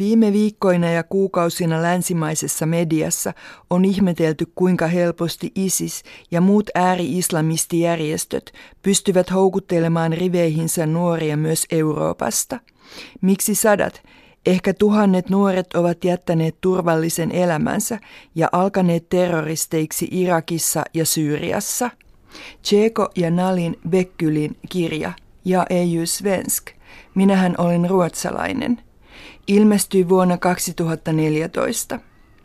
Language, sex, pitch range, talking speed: Finnish, female, 165-190 Hz, 90 wpm